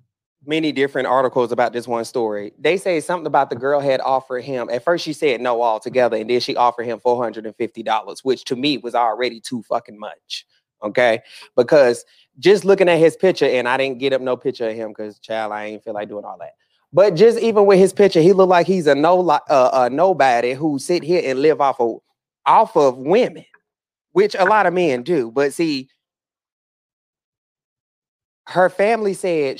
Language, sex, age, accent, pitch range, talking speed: English, male, 30-49, American, 125-185 Hz, 195 wpm